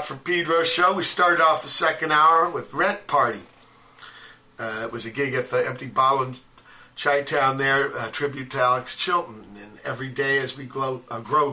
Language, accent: English, American